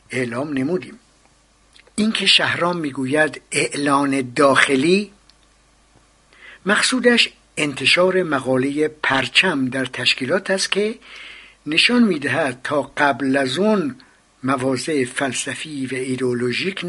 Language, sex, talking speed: Persian, male, 90 wpm